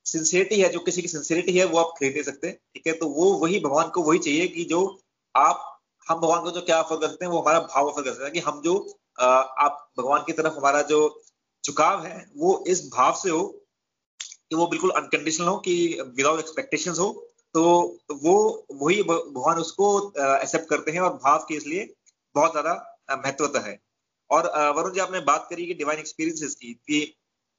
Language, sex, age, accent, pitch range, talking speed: Hindi, male, 30-49, native, 145-180 Hz, 200 wpm